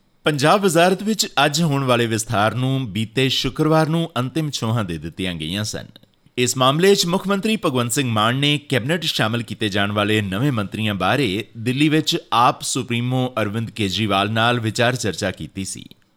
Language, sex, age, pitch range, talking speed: Punjabi, male, 30-49, 105-150 Hz, 165 wpm